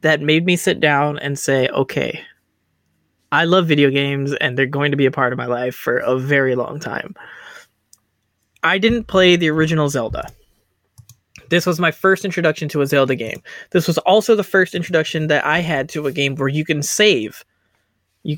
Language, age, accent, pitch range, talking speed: English, 20-39, American, 130-170 Hz, 195 wpm